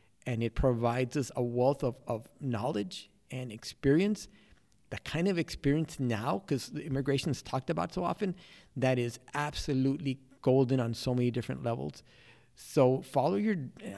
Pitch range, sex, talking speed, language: 130-155 Hz, male, 155 wpm, English